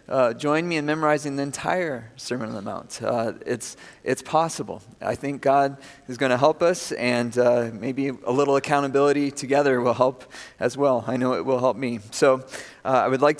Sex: male